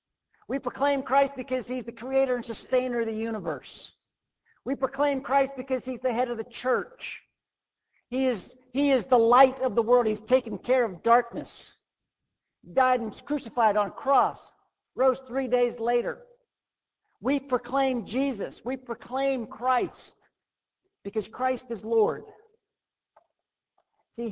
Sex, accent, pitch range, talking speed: male, American, 215-265 Hz, 145 wpm